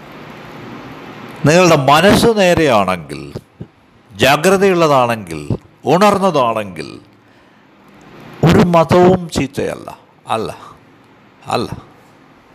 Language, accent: Malayalam, native